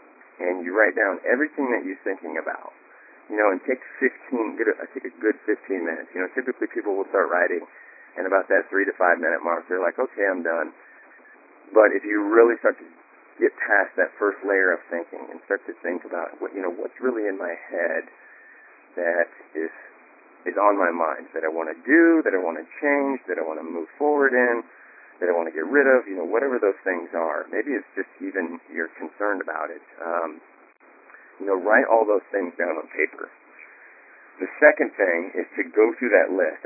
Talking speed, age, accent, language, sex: 215 wpm, 40-59, American, English, male